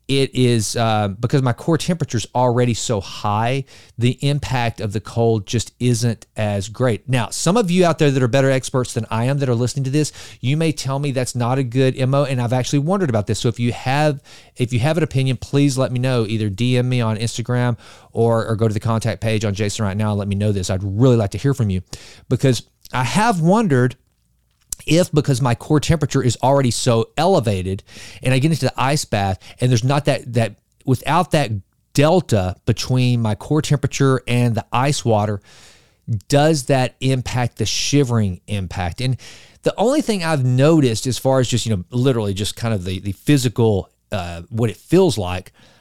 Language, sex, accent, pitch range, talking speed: English, male, American, 110-140 Hz, 210 wpm